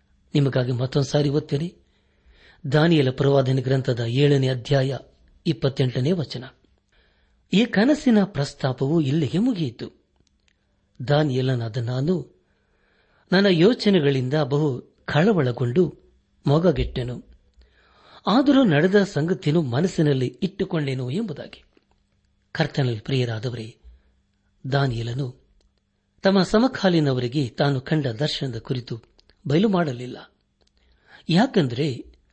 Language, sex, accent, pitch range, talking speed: Kannada, male, native, 120-160 Hz, 75 wpm